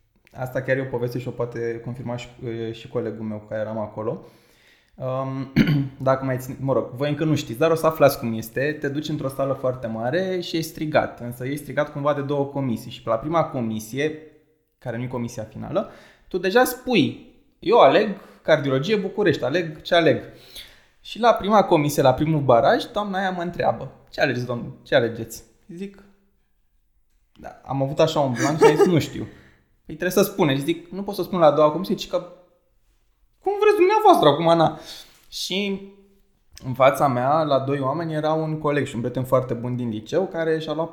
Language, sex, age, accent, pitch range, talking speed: Romanian, male, 20-39, native, 130-170 Hz, 195 wpm